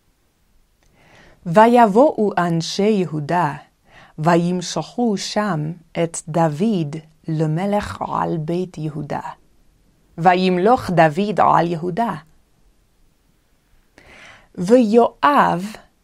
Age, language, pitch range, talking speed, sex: 30-49, Hebrew, 165-215 Hz, 60 wpm, female